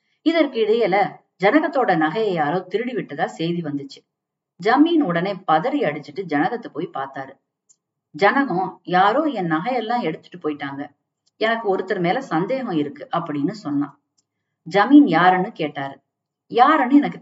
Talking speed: 120 wpm